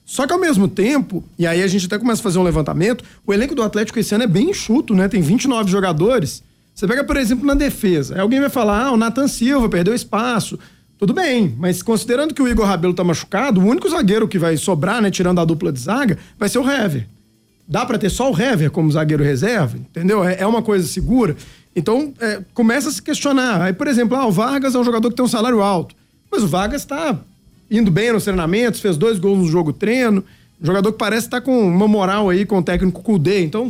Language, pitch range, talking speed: Portuguese, 185-240 Hz, 235 wpm